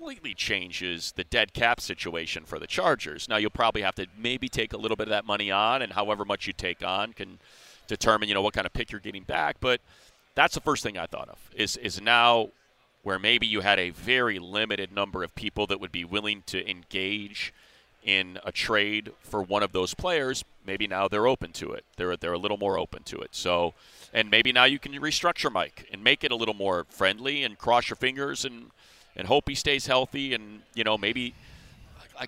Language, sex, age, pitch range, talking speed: English, male, 30-49, 95-120 Hz, 220 wpm